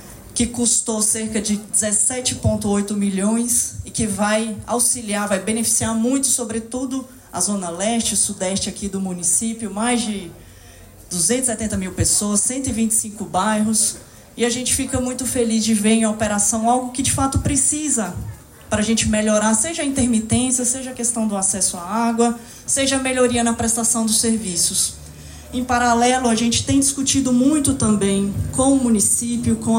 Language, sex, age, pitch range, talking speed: Portuguese, female, 20-39, 210-250 Hz, 155 wpm